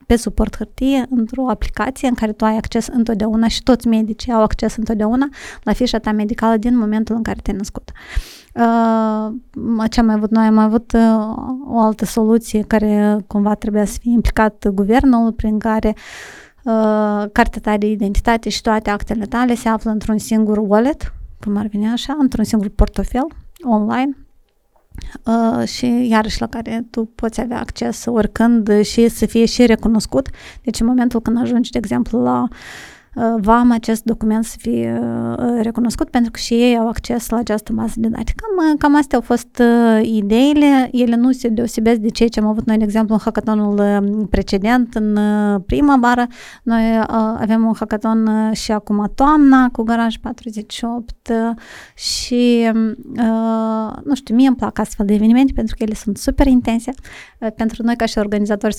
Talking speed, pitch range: 165 wpm, 215-235 Hz